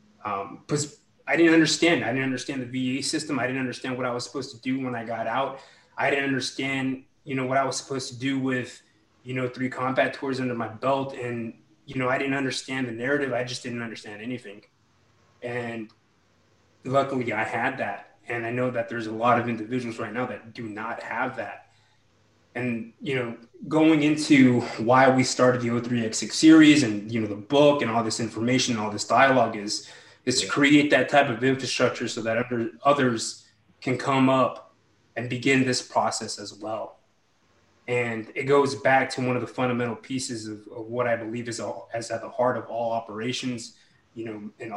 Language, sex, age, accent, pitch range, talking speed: English, male, 20-39, American, 110-130 Hz, 200 wpm